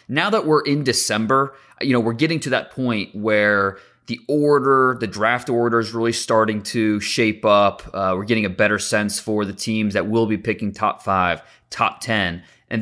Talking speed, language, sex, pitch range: 195 wpm, English, male, 105-125 Hz